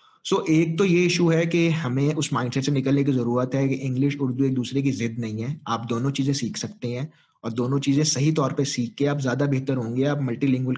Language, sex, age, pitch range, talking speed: English, male, 30-49, 120-145 Hz, 190 wpm